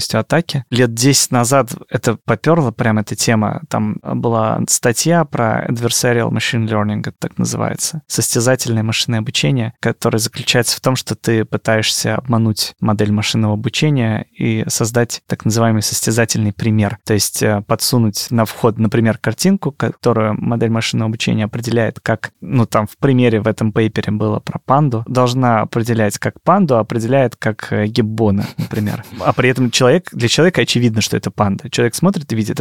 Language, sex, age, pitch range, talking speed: Russian, male, 20-39, 110-130 Hz, 155 wpm